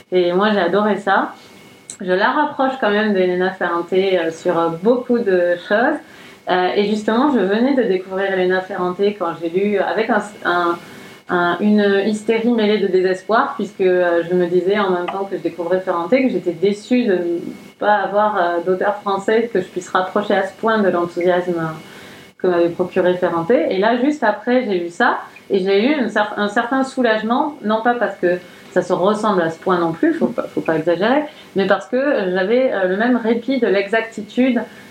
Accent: French